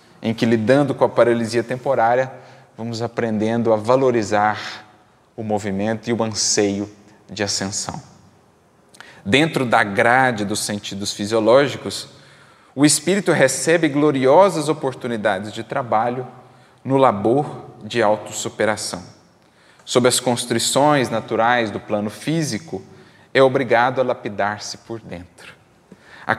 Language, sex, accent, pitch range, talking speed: Portuguese, male, Brazilian, 110-155 Hz, 110 wpm